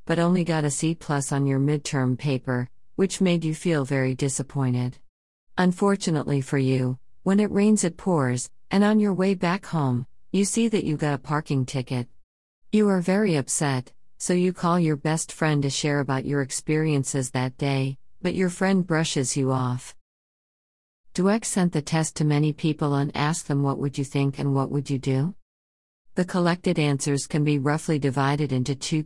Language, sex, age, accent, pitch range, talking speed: English, female, 50-69, American, 130-180 Hz, 180 wpm